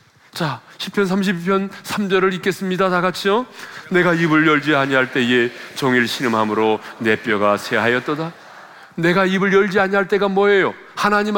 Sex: male